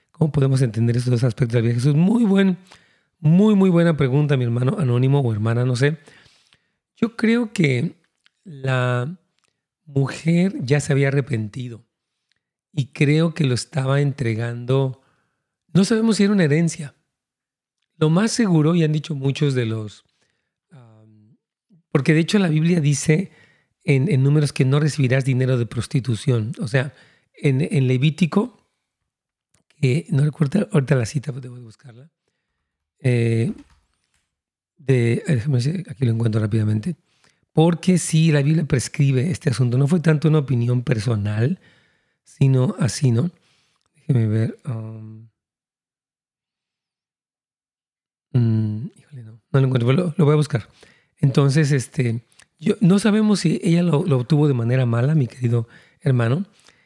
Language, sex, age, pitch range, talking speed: Spanish, male, 40-59, 125-160 Hz, 140 wpm